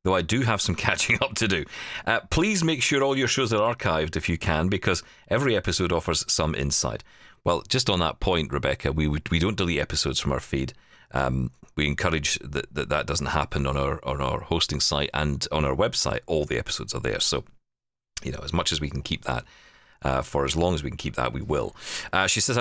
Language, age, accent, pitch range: English, 40-59, British, 75-115 Hz